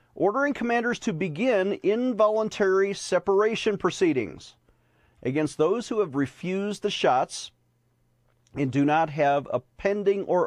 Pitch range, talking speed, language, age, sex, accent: 135-195 Hz, 120 wpm, English, 40-59, male, American